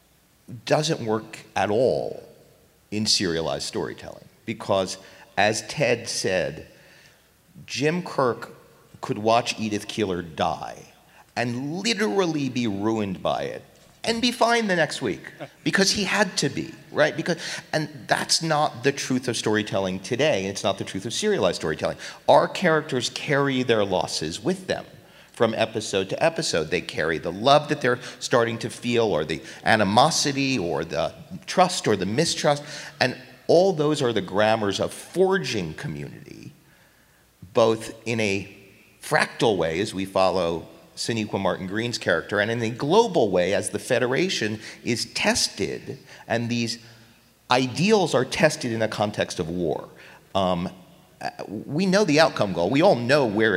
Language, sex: English, male